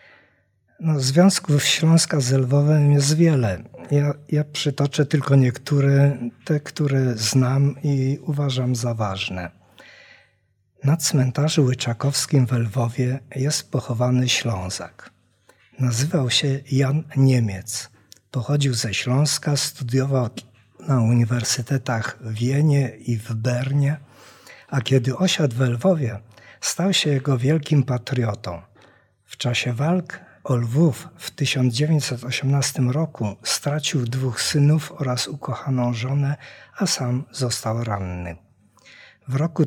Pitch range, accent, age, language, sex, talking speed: 120-145 Hz, native, 50-69, Polish, male, 105 wpm